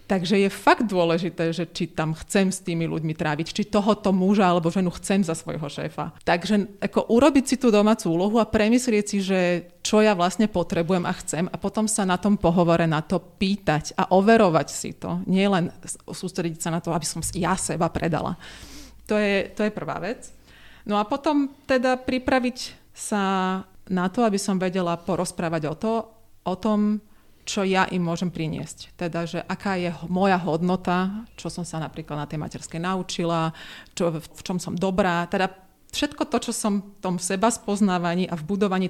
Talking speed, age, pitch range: 185 wpm, 30-49, 170-205 Hz